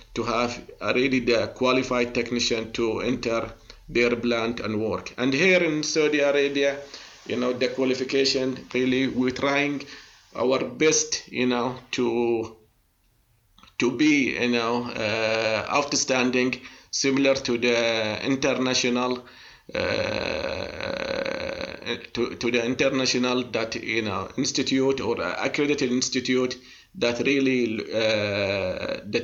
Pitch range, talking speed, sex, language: 115-135 Hz, 115 wpm, male, English